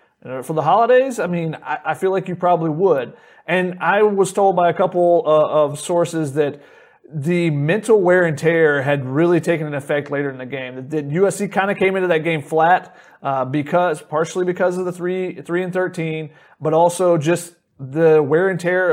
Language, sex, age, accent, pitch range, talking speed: English, male, 30-49, American, 150-180 Hz, 205 wpm